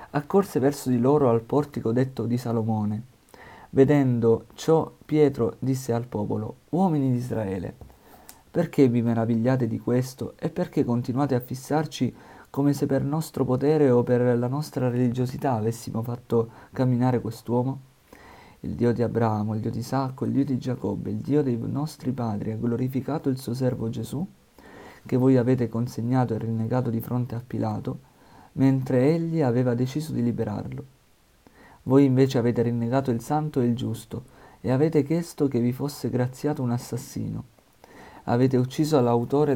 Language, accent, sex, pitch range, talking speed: Italian, native, male, 115-140 Hz, 155 wpm